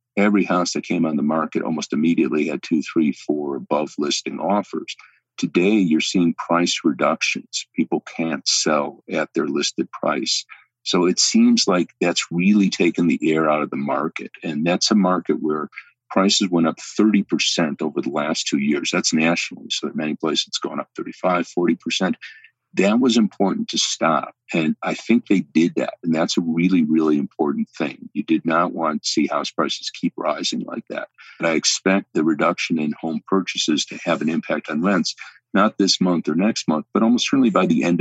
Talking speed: 195 wpm